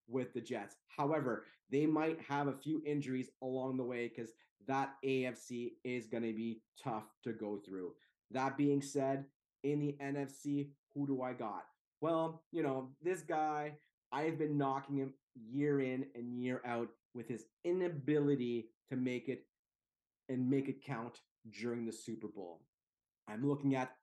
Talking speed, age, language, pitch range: 165 wpm, 30-49, English, 125-145 Hz